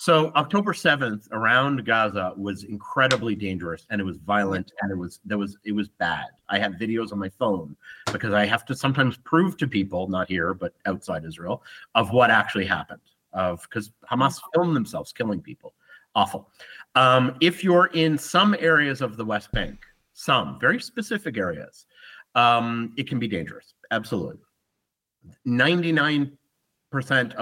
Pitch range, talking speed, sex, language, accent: 100-125 Hz, 160 wpm, male, Swedish, American